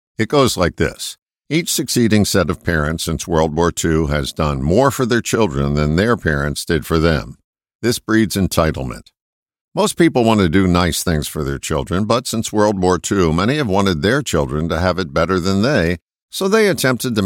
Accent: American